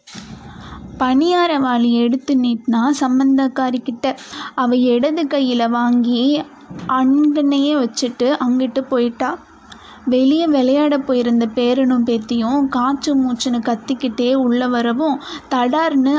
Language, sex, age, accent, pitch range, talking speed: Tamil, female, 20-39, native, 245-275 Hz, 85 wpm